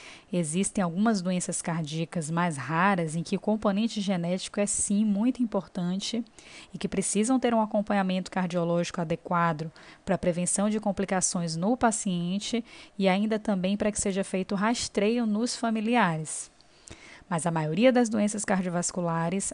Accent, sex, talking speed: Brazilian, female, 140 wpm